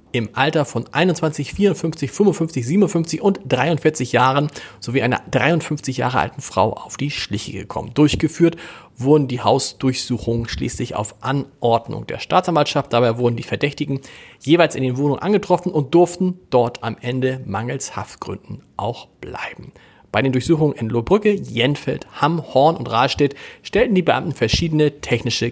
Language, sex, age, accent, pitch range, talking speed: German, male, 40-59, German, 115-155 Hz, 145 wpm